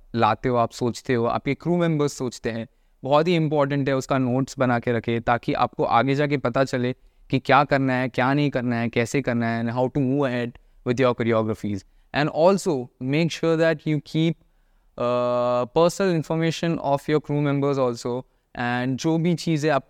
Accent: Indian